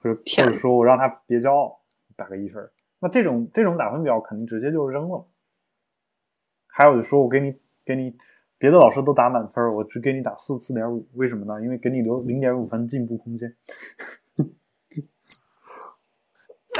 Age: 20-39